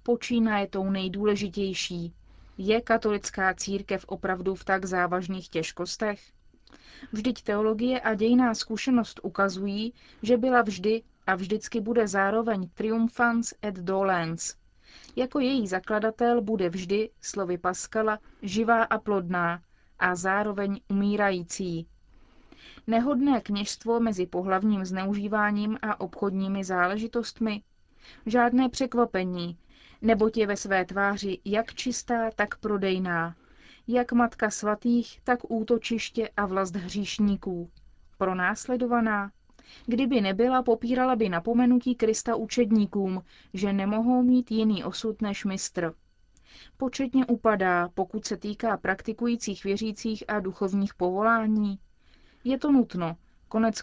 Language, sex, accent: Czech, female, native